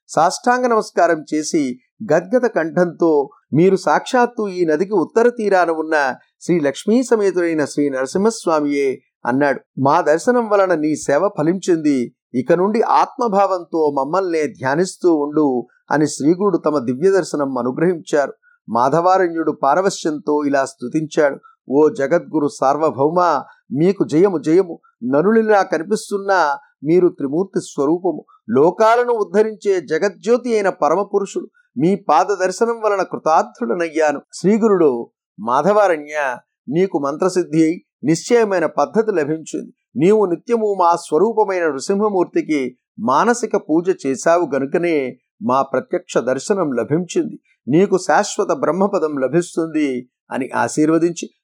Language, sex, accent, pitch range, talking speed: Telugu, male, native, 150-205 Hz, 100 wpm